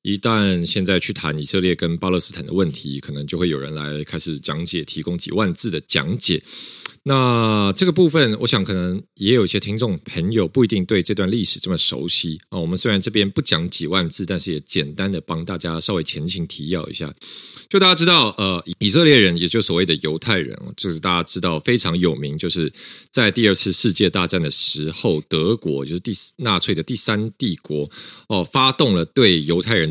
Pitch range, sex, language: 80-120 Hz, male, Chinese